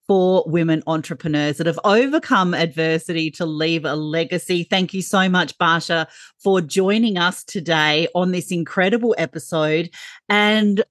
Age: 40-59